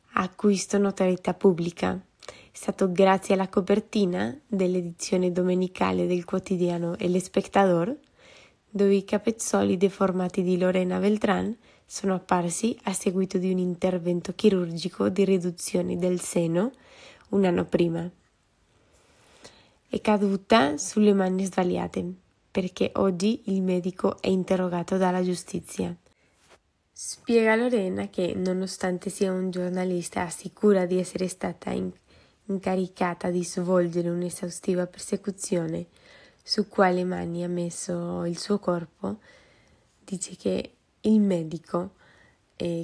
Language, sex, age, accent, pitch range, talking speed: Italian, female, 20-39, native, 175-195 Hz, 110 wpm